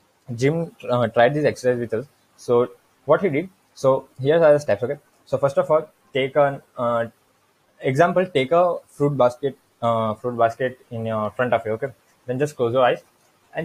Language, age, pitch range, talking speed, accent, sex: English, 20-39, 115-145 Hz, 195 wpm, Indian, male